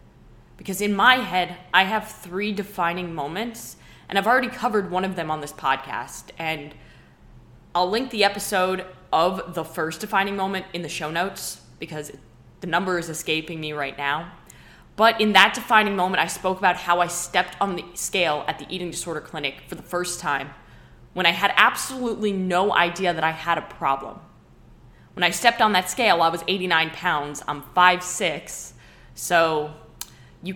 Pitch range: 160-200 Hz